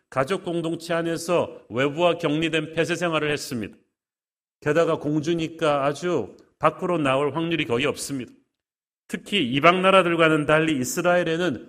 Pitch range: 145-175 Hz